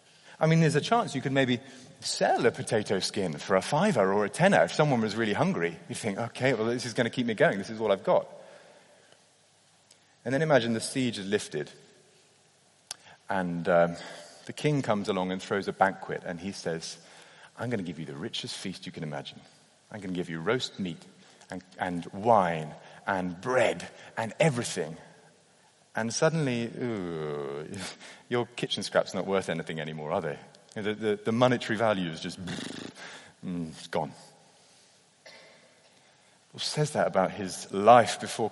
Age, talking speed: 30-49, 175 wpm